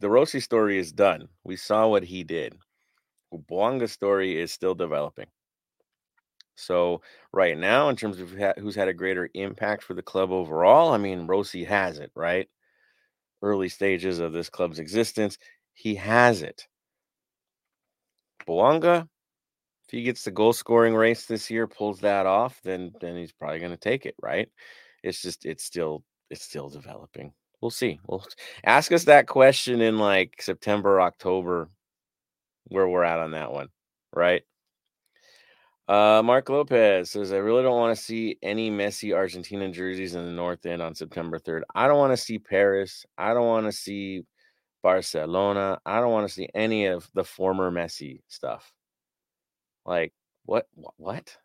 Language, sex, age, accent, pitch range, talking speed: English, male, 30-49, American, 90-115 Hz, 160 wpm